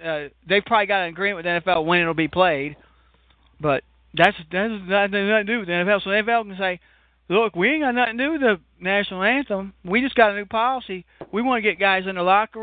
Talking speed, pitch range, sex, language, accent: 255 wpm, 155-205 Hz, male, English, American